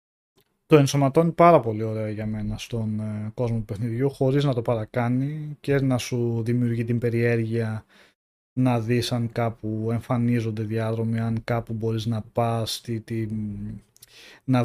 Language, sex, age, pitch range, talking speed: Greek, male, 20-39, 115-145 Hz, 135 wpm